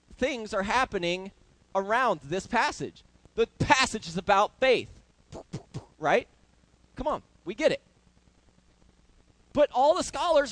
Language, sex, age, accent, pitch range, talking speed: English, male, 30-49, American, 160-240 Hz, 120 wpm